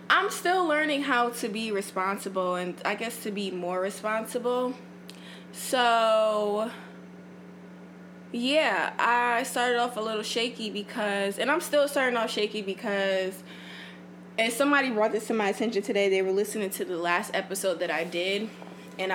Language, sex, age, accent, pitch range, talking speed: English, female, 20-39, American, 190-235 Hz, 155 wpm